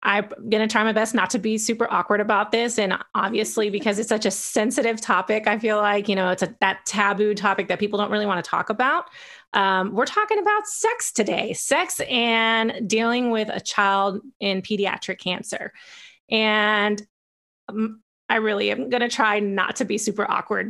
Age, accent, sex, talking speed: 30-49, American, female, 195 wpm